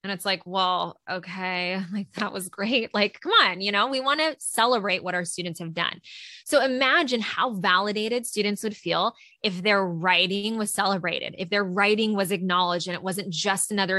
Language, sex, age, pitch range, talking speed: English, female, 20-39, 185-230 Hz, 195 wpm